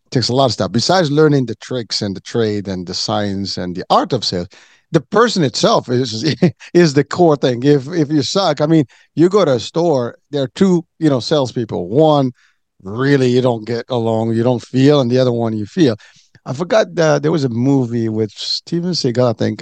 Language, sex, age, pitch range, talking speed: English, male, 50-69, 105-135 Hz, 220 wpm